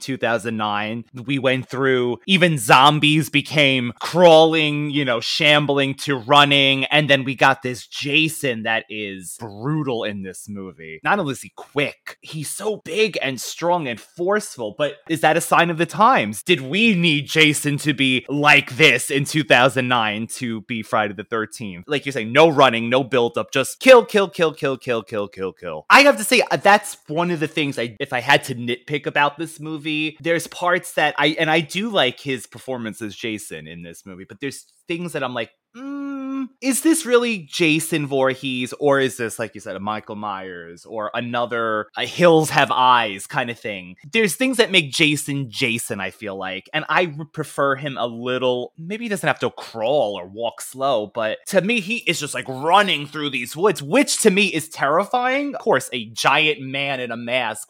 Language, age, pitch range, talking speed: English, 20-39, 120-165 Hz, 195 wpm